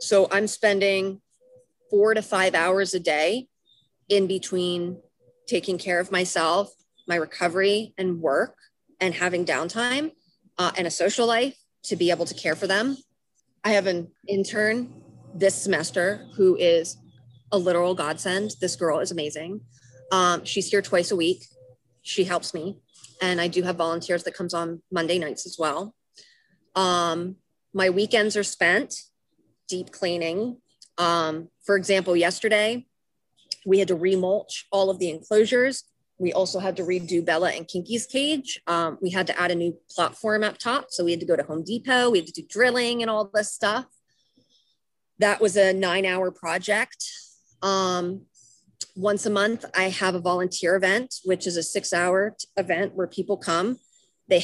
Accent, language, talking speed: American, English, 165 wpm